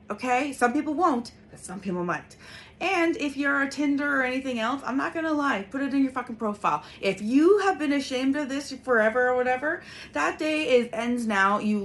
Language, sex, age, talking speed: English, female, 30-49, 215 wpm